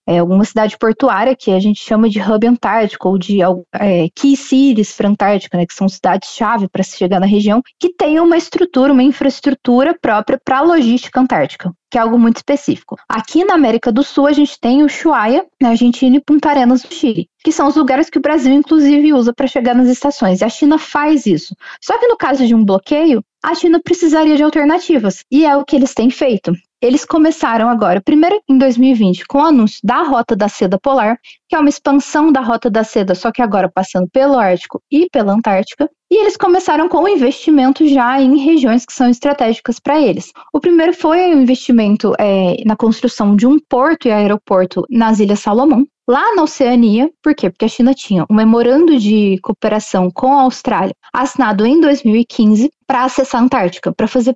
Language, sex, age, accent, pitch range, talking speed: Portuguese, female, 20-39, Brazilian, 215-290 Hz, 200 wpm